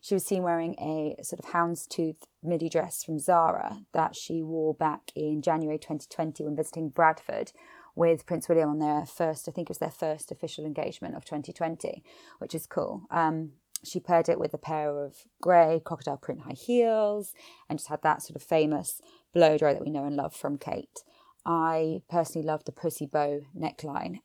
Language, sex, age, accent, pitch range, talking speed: English, female, 20-39, British, 150-170 Hz, 190 wpm